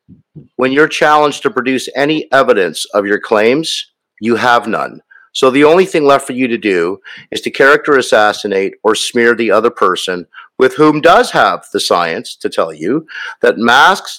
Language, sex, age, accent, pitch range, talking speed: English, male, 50-69, American, 125-170 Hz, 180 wpm